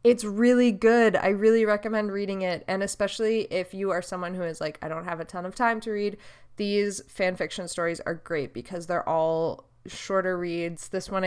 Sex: female